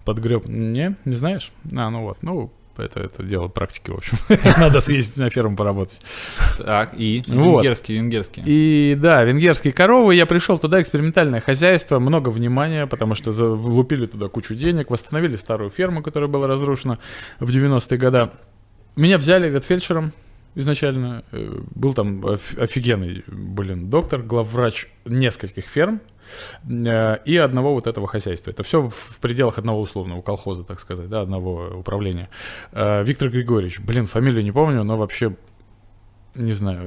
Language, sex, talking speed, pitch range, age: Russian, male, 140 wpm, 100-140 Hz, 20-39